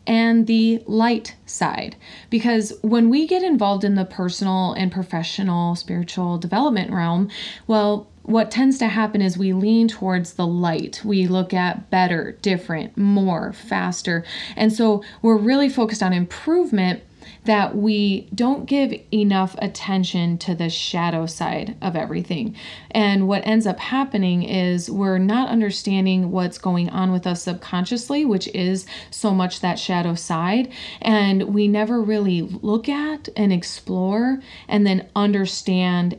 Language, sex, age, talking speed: English, female, 30-49, 145 wpm